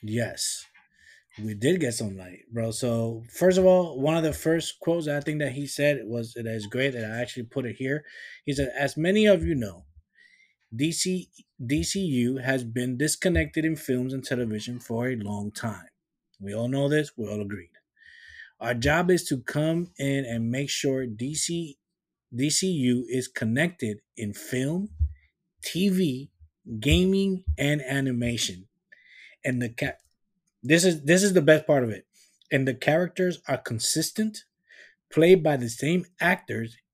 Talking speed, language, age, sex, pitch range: 160 wpm, English, 20-39, male, 115-160 Hz